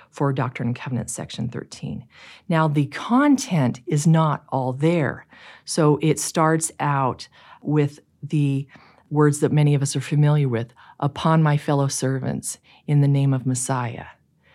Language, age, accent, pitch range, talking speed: English, 40-59, American, 135-160 Hz, 150 wpm